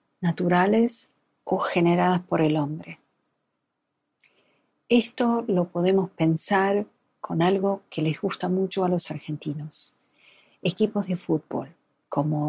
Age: 50-69